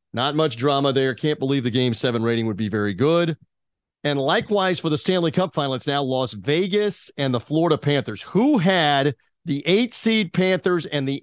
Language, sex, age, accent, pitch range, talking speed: English, male, 40-59, American, 125-160 Hz, 190 wpm